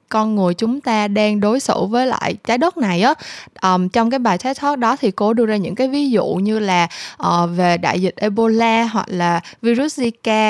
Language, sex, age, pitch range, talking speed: Vietnamese, female, 20-39, 195-255 Hz, 225 wpm